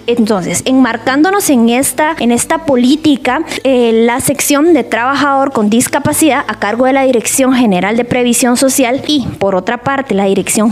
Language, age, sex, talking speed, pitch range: Spanish, 20-39, female, 160 wpm, 220-280 Hz